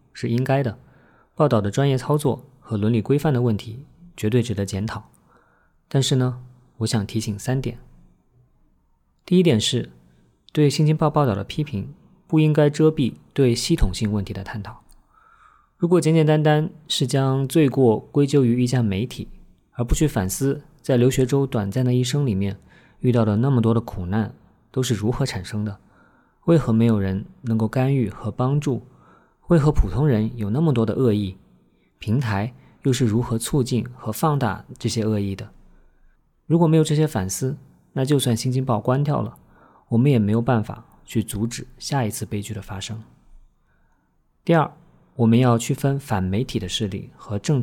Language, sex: Chinese, male